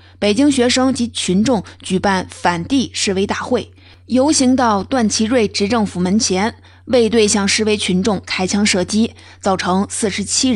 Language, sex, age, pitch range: Chinese, female, 20-39, 180-220 Hz